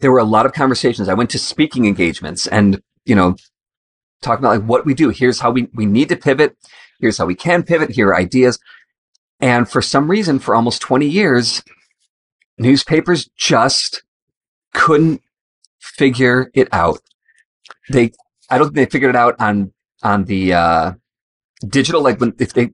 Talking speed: 170 wpm